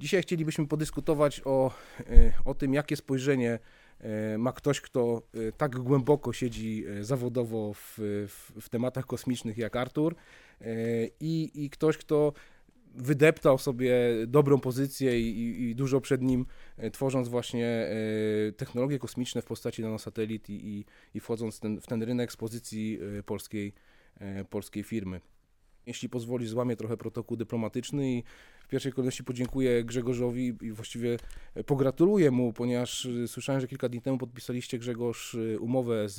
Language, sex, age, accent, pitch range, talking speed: Polish, male, 20-39, native, 110-135 Hz, 130 wpm